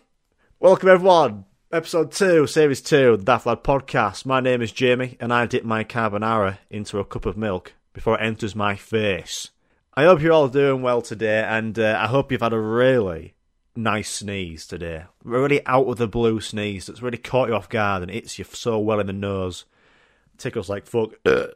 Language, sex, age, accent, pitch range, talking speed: English, male, 30-49, British, 100-130 Hz, 200 wpm